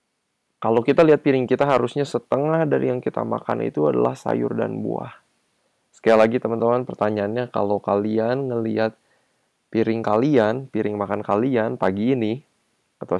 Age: 20-39